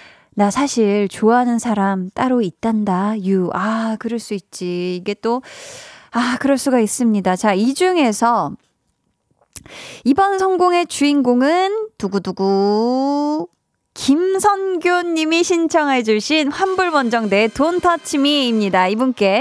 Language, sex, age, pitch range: Korean, female, 20-39, 210-310 Hz